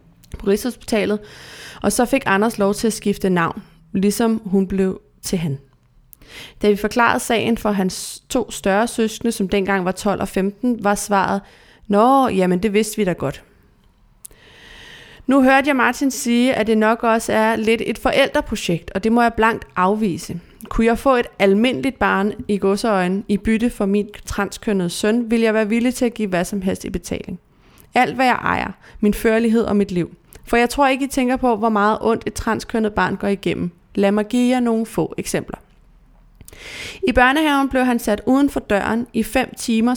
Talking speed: 190 wpm